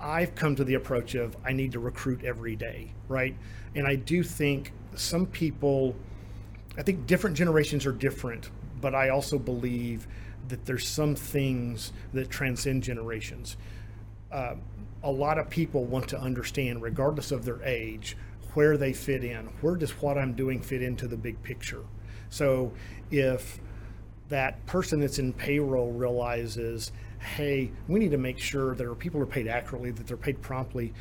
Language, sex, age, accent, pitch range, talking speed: English, male, 40-59, American, 110-135 Hz, 165 wpm